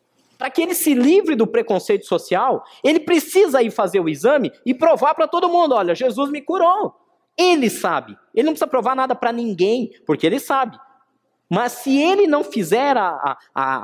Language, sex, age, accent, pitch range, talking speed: Portuguese, male, 20-39, Brazilian, 185-295 Hz, 175 wpm